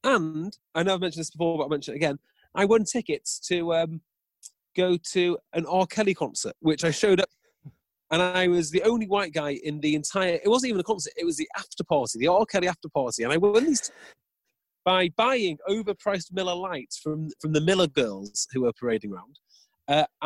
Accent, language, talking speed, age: British, English, 210 wpm, 30-49